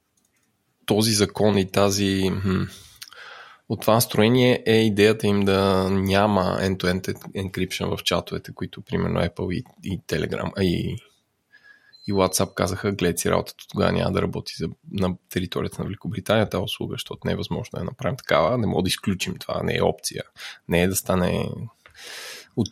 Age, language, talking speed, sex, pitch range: 20-39, Bulgarian, 165 wpm, male, 95-115 Hz